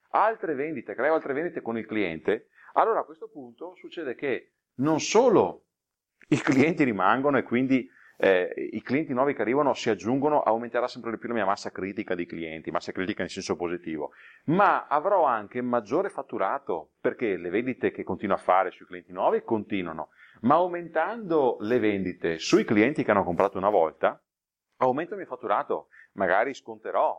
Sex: male